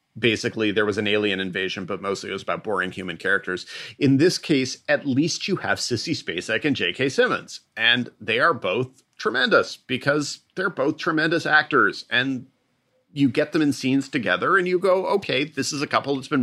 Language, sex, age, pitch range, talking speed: English, male, 40-59, 115-150 Hz, 195 wpm